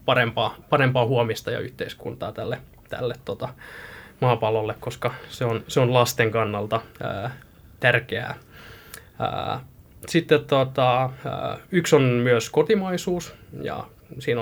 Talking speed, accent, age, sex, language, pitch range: 115 wpm, native, 20-39, male, Finnish, 115-145 Hz